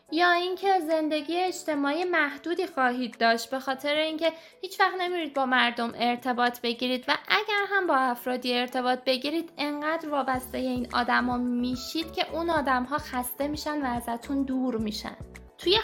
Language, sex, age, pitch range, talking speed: Persian, female, 10-29, 255-315 Hz, 150 wpm